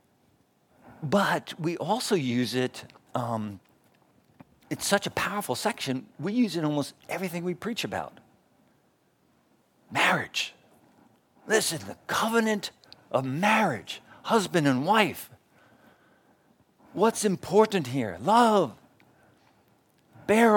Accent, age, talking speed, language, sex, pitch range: American, 50-69, 100 wpm, English, male, 120-175 Hz